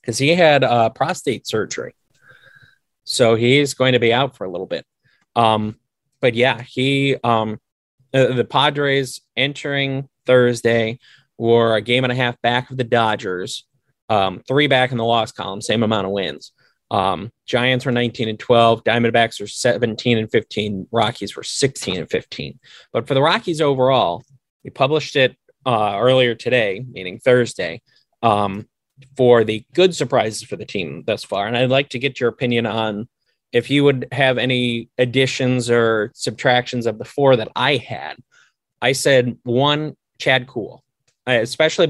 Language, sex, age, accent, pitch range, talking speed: English, male, 30-49, American, 115-135 Hz, 165 wpm